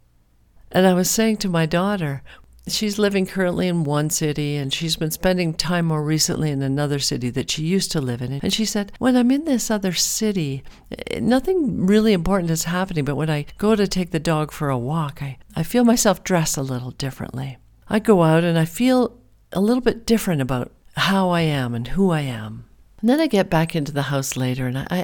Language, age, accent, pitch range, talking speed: English, 50-69, American, 130-185 Hz, 220 wpm